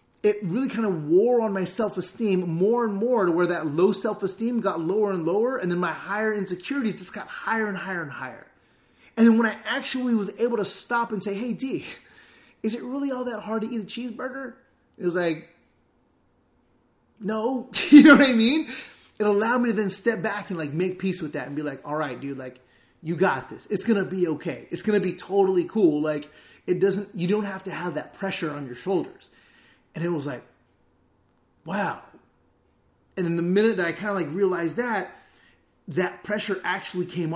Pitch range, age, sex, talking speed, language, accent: 170-220 Hz, 30-49, male, 210 wpm, English, American